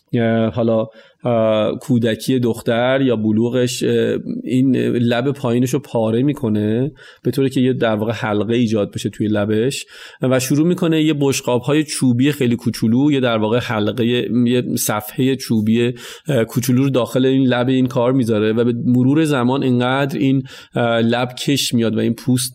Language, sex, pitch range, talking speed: Persian, male, 115-135 Hz, 155 wpm